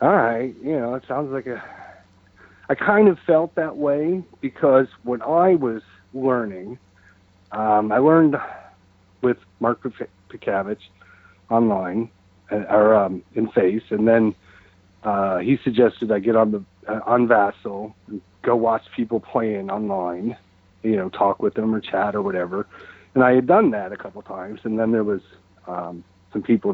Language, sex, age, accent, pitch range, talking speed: English, male, 40-59, American, 100-135 Hz, 155 wpm